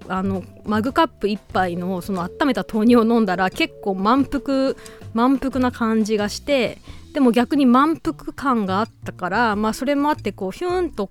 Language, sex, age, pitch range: Japanese, female, 20-39, 190-265 Hz